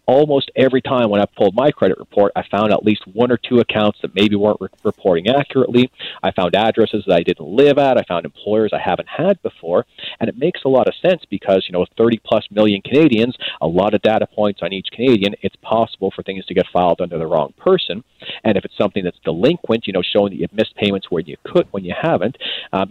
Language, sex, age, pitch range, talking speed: English, male, 40-59, 100-120 Hz, 235 wpm